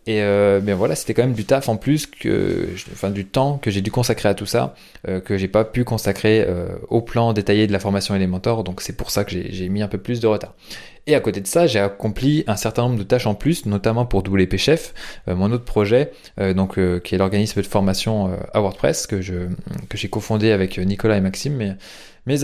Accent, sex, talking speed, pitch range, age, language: French, male, 245 wpm, 95-120 Hz, 20-39, French